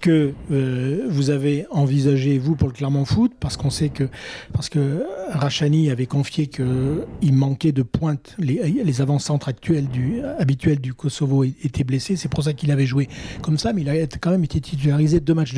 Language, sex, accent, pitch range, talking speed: French, male, French, 135-170 Hz, 190 wpm